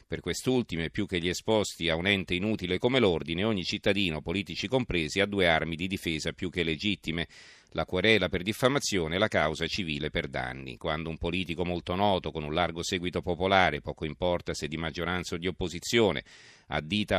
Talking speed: 185 wpm